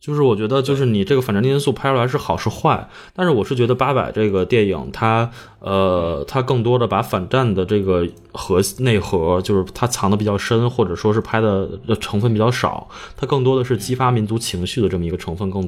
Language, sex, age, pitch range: Chinese, male, 20-39, 95-130 Hz